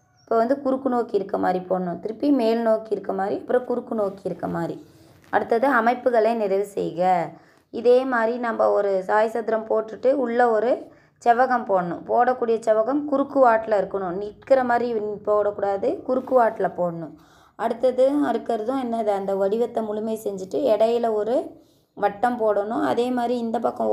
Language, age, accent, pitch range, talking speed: Tamil, 20-39, native, 200-245 Hz, 145 wpm